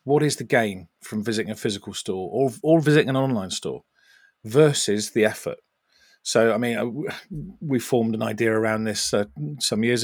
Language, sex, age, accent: English, male, 40-59, British